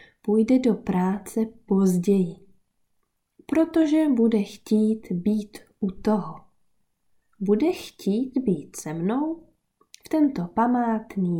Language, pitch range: Czech, 185-255 Hz